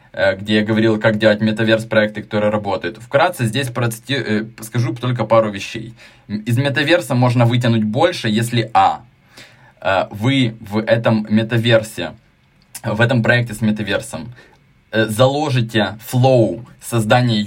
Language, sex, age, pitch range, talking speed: Ukrainian, male, 20-39, 110-130 Hz, 115 wpm